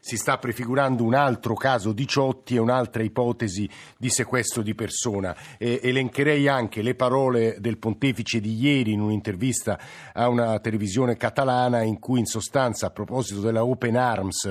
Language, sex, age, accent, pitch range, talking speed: Italian, male, 50-69, native, 115-135 Hz, 160 wpm